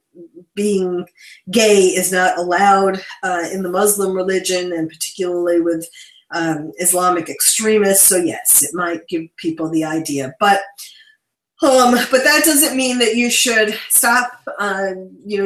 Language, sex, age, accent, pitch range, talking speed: English, female, 40-59, American, 185-240 Hz, 140 wpm